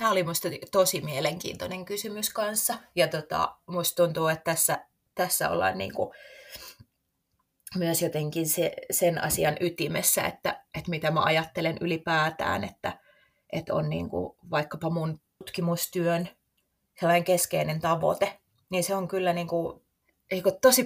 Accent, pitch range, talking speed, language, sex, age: native, 155-185 Hz, 130 wpm, Finnish, female, 30-49